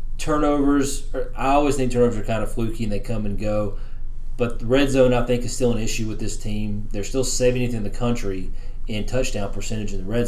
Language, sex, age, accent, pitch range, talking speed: English, male, 30-49, American, 105-125 Hz, 235 wpm